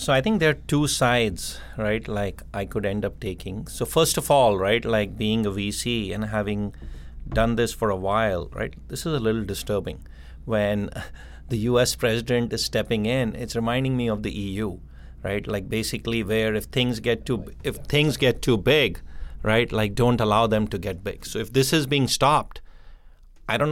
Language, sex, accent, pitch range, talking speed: English, male, Indian, 105-125 Hz, 195 wpm